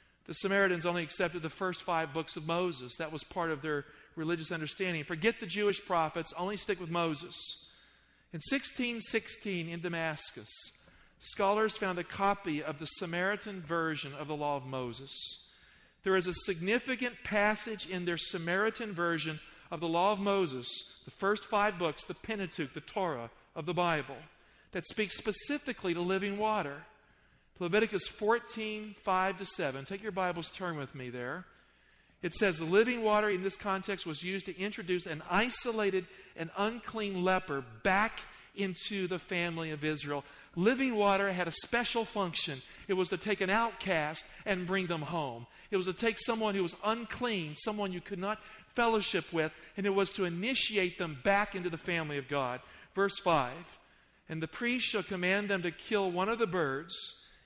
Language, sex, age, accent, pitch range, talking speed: English, male, 40-59, American, 165-205 Hz, 170 wpm